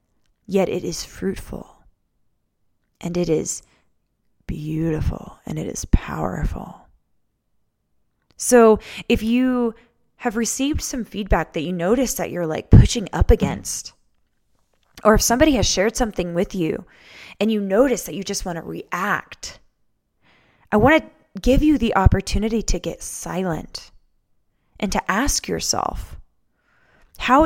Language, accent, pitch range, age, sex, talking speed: English, American, 175-240 Hz, 10-29, female, 130 wpm